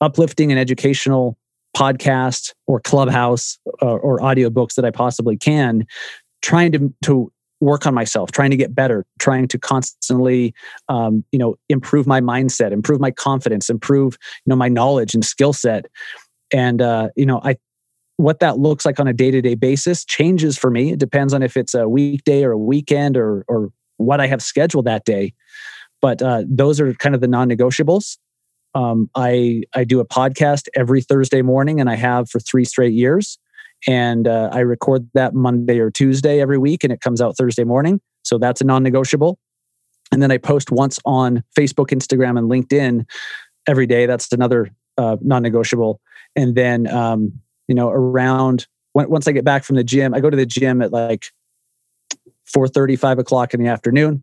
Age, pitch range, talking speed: 30-49, 120-140 Hz, 185 wpm